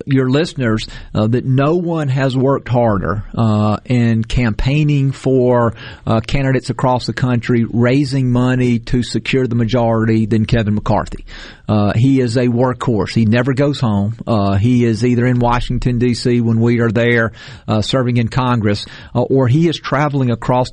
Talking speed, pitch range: 165 wpm, 115-130 Hz